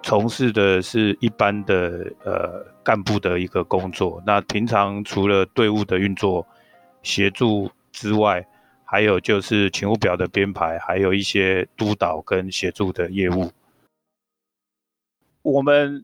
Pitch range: 100-115 Hz